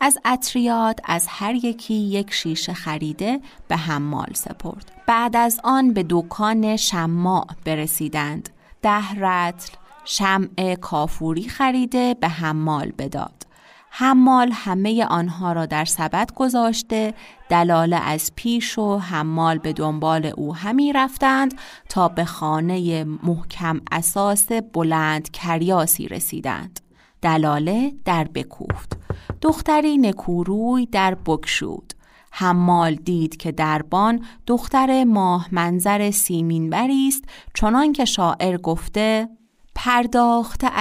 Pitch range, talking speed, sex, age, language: 170-230 Hz, 105 wpm, female, 30-49, Persian